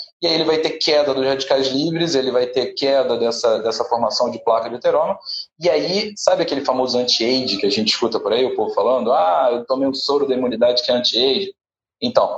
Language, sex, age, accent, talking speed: Portuguese, male, 20-39, Brazilian, 225 wpm